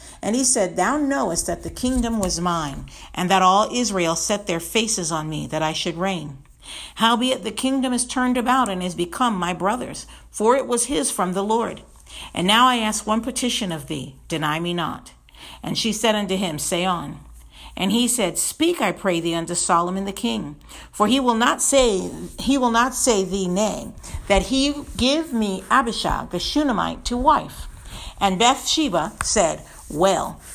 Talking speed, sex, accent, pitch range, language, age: 185 wpm, female, American, 175-245 Hz, English, 50-69